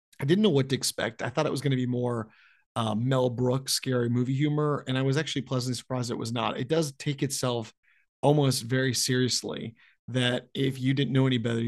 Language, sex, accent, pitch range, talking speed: English, male, American, 120-135 Hz, 220 wpm